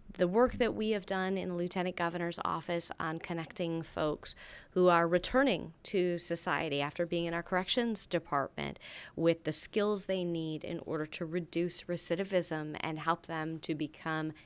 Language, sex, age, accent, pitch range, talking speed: English, female, 30-49, American, 160-185 Hz, 165 wpm